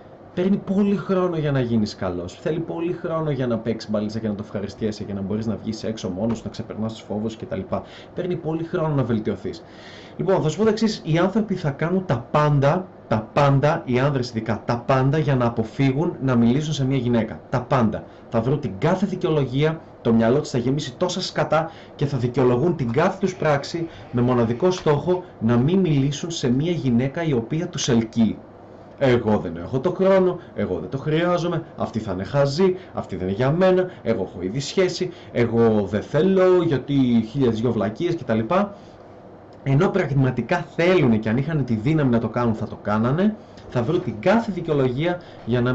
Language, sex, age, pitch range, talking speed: Greek, male, 30-49, 115-170 Hz, 190 wpm